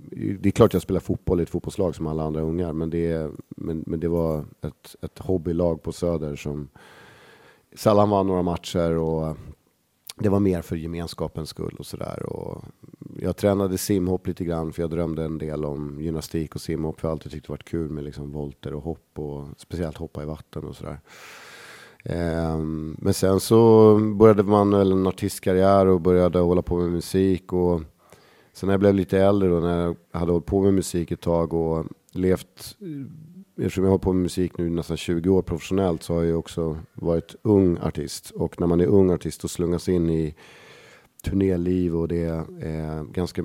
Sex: male